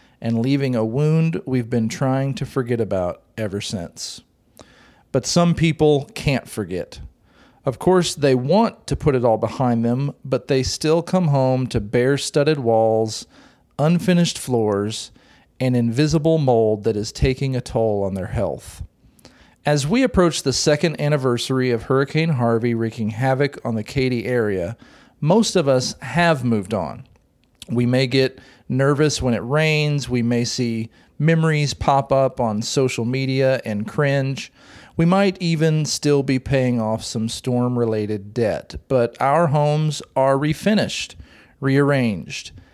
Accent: American